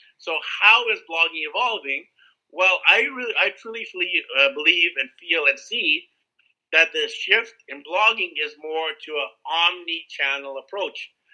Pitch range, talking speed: 140-200 Hz, 155 wpm